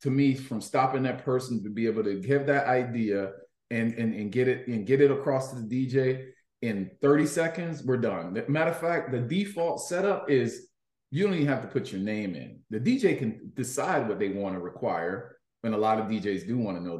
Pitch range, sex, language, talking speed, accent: 115-150 Hz, male, English, 225 wpm, American